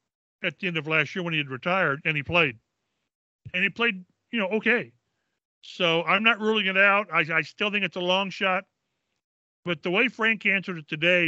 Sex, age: male, 40-59